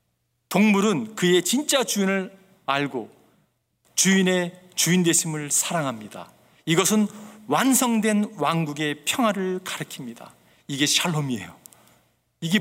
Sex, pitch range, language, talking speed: male, 150-205 Hz, English, 80 wpm